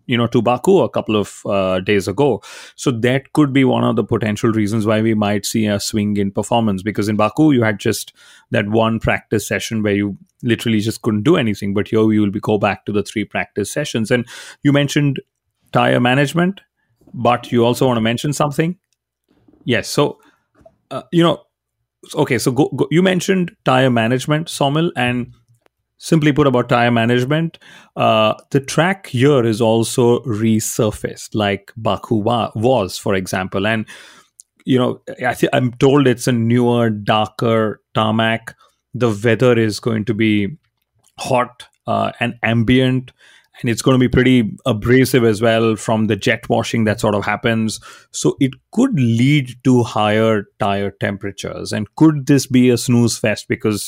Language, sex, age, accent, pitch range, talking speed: English, male, 30-49, Indian, 110-130 Hz, 175 wpm